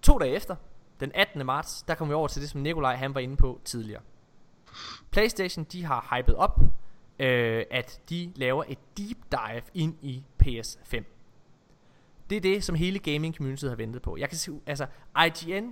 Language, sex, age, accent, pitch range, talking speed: Danish, male, 20-39, native, 135-190 Hz, 185 wpm